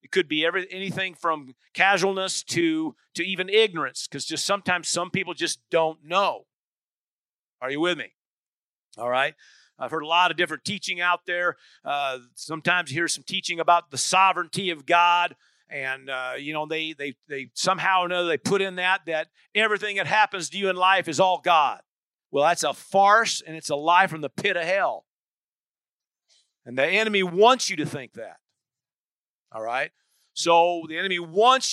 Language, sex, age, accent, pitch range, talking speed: English, male, 50-69, American, 160-195 Hz, 180 wpm